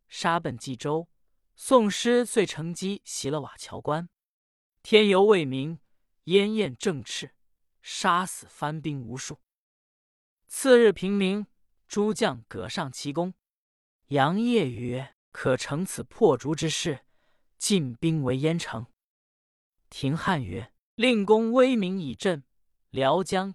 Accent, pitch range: native, 130-200 Hz